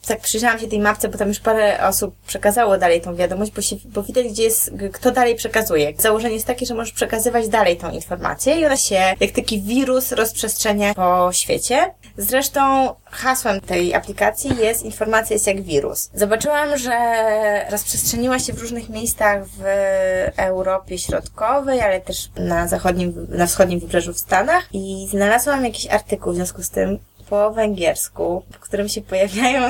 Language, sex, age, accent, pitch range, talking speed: Polish, female, 20-39, native, 195-235 Hz, 165 wpm